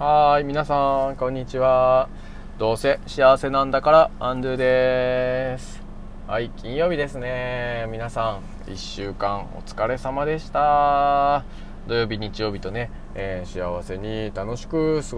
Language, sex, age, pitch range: Japanese, male, 20-39, 95-130 Hz